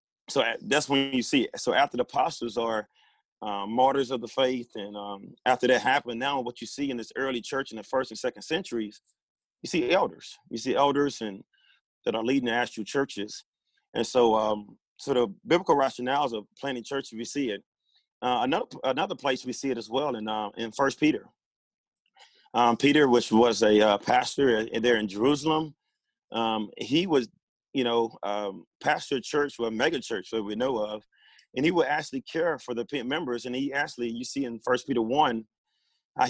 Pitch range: 115-140 Hz